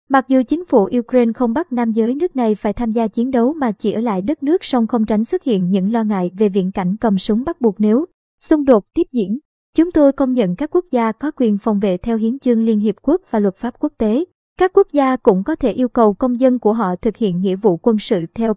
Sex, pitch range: male, 220-275 Hz